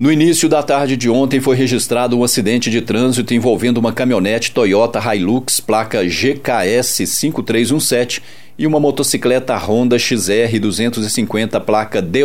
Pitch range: 110-135 Hz